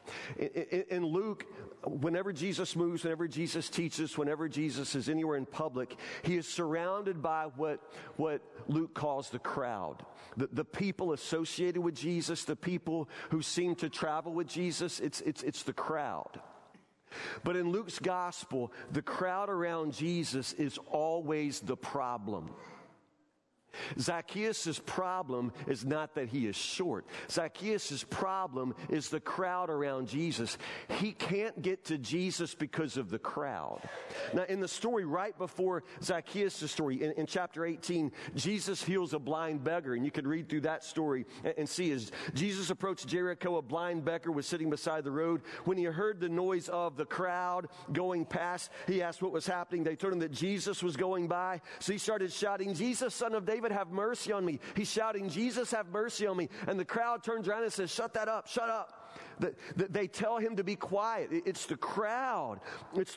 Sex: male